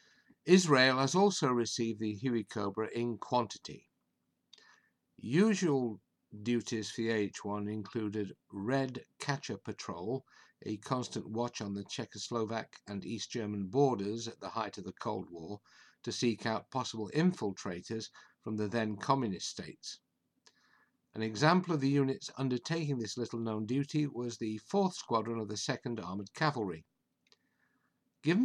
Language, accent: English, British